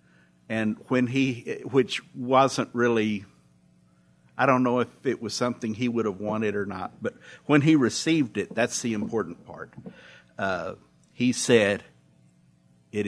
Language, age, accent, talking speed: English, 60-79, American, 145 wpm